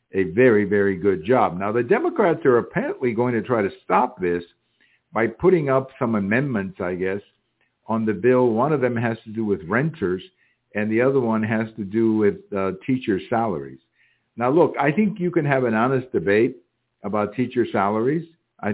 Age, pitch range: 60-79, 100-140 Hz